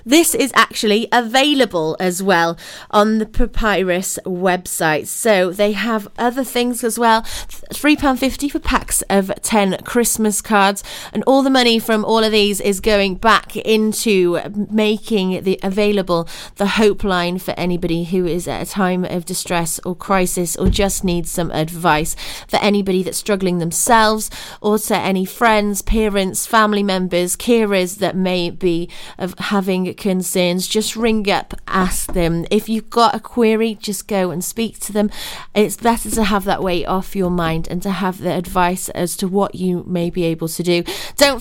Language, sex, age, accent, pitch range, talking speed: English, female, 30-49, British, 175-220 Hz, 170 wpm